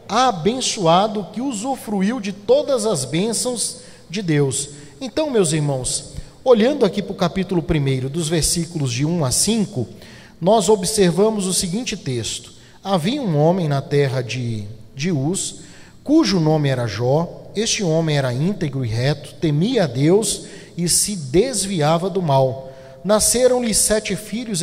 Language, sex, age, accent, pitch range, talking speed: Portuguese, male, 50-69, Brazilian, 145-200 Hz, 140 wpm